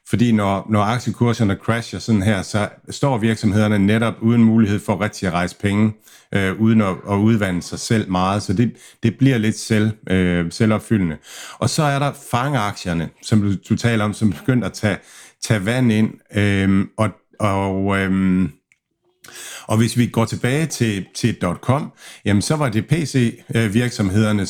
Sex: male